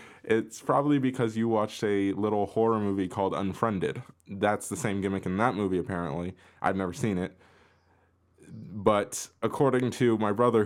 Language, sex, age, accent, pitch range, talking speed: English, male, 20-39, American, 95-120 Hz, 160 wpm